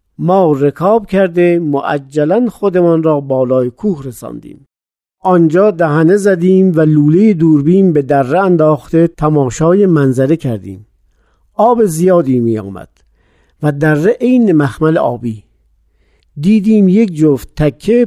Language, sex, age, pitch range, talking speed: Persian, male, 50-69, 135-185 Hz, 110 wpm